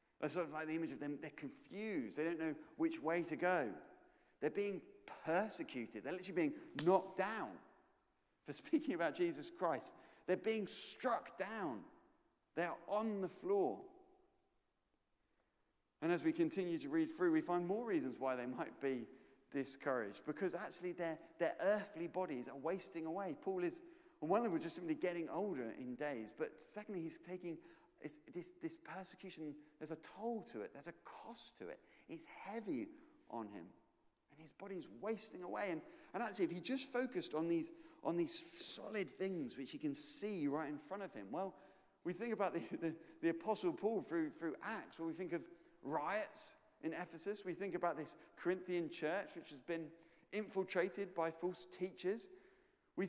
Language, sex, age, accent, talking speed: English, male, 30-49, British, 175 wpm